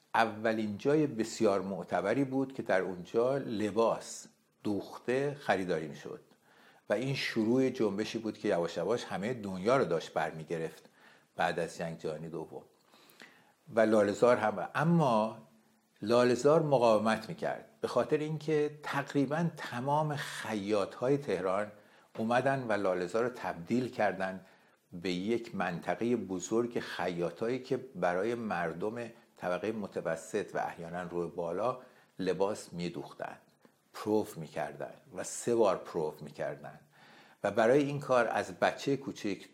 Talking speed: 125 wpm